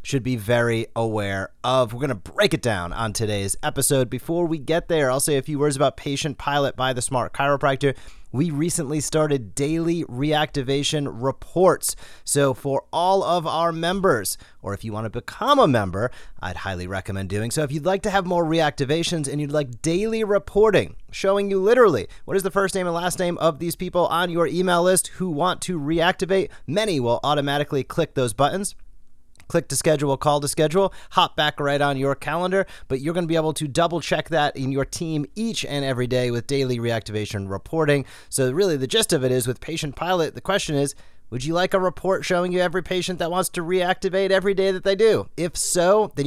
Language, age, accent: English, 30-49, American